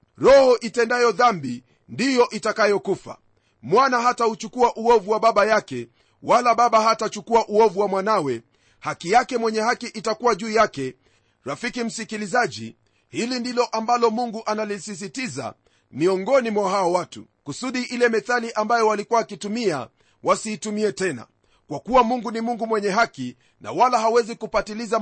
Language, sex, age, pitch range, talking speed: Swahili, male, 40-59, 185-235 Hz, 135 wpm